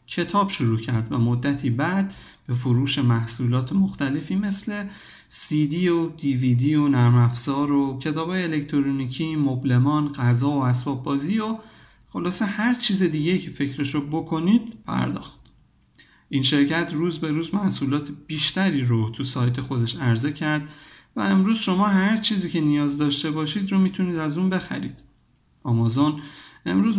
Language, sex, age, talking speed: Persian, male, 50-69, 140 wpm